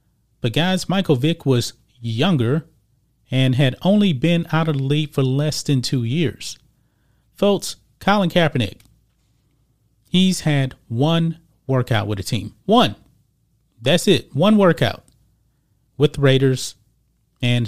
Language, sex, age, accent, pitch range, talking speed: English, male, 30-49, American, 120-160 Hz, 130 wpm